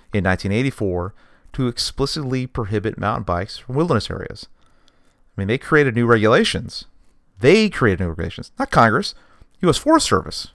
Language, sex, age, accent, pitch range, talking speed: English, male, 40-59, American, 95-135 Hz, 140 wpm